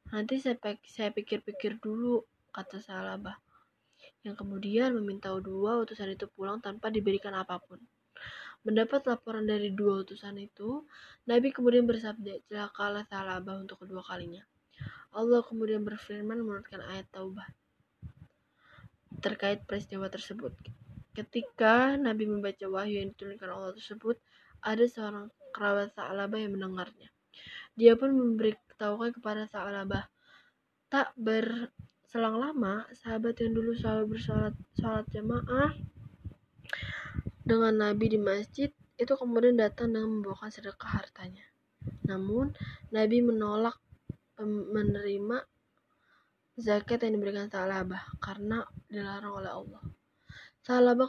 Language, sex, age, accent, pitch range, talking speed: Indonesian, female, 10-29, native, 200-230 Hz, 105 wpm